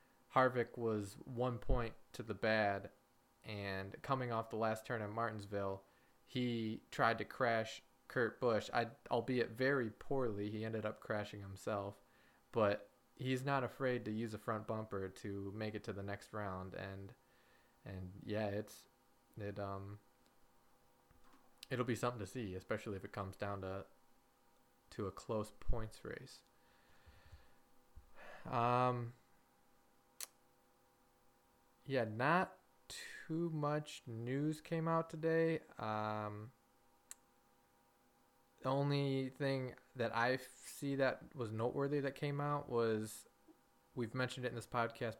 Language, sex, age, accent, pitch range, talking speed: English, male, 20-39, American, 100-125 Hz, 130 wpm